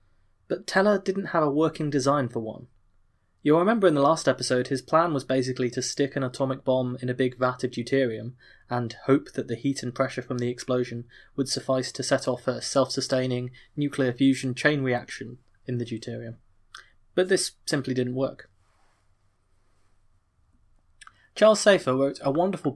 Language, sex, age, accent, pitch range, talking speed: English, male, 20-39, British, 115-150 Hz, 170 wpm